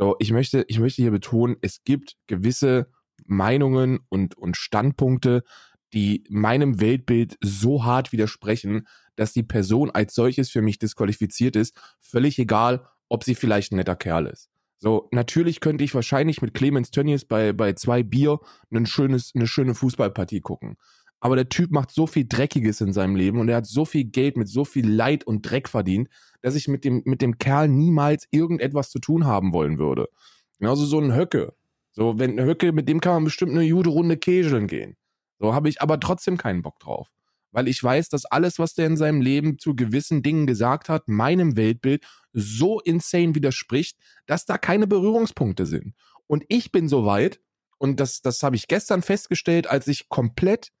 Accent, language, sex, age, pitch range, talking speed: German, German, male, 20-39, 110-150 Hz, 190 wpm